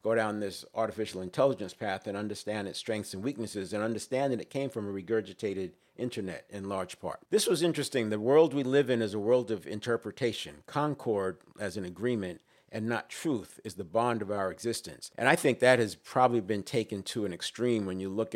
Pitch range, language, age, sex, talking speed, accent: 100-120 Hz, English, 50-69, male, 210 wpm, American